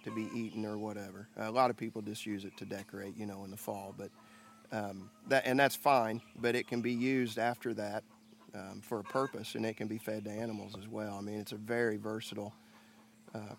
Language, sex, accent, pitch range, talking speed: English, male, American, 110-125 Hz, 230 wpm